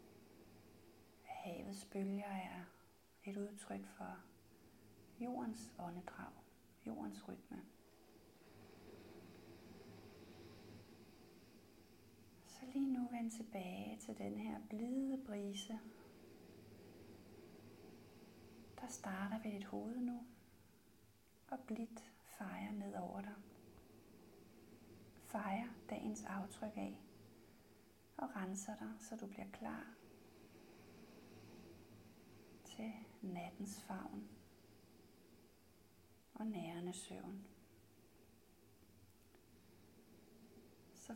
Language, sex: Danish, female